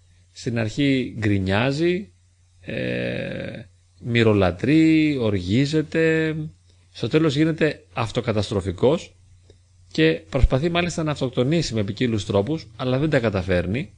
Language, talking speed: Greek, 90 wpm